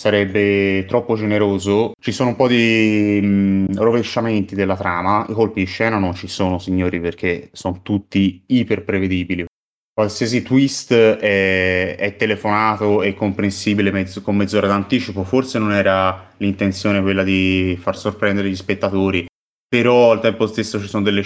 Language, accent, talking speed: Italian, native, 150 wpm